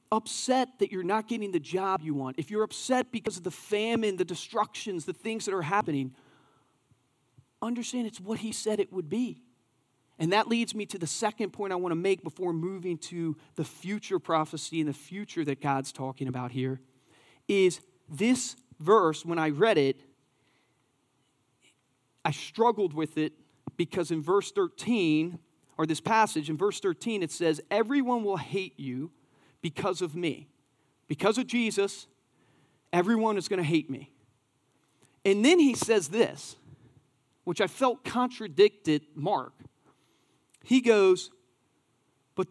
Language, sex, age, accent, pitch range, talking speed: English, male, 40-59, American, 145-215 Hz, 155 wpm